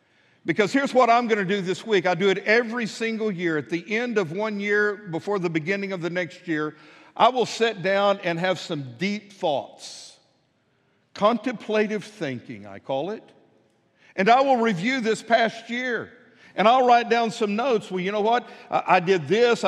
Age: 50-69